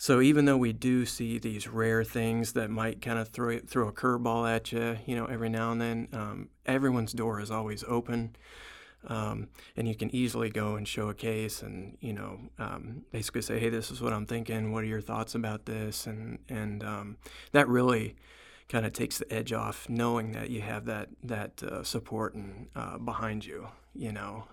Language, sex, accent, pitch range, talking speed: English, male, American, 110-120 Hz, 205 wpm